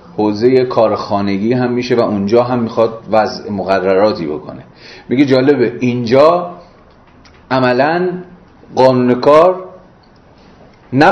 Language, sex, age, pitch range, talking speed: Persian, male, 30-49, 105-130 Hz, 95 wpm